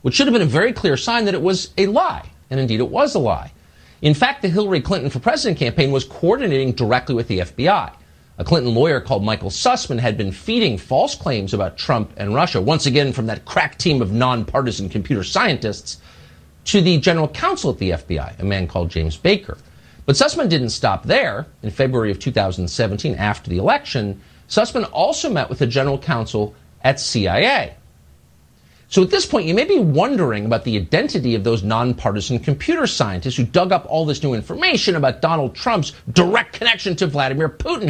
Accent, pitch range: American, 90-150 Hz